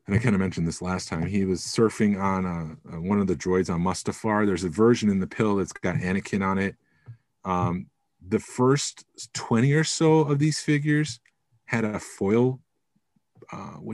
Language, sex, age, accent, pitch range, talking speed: English, male, 30-49, American, 90-115 Hz, 185 wpm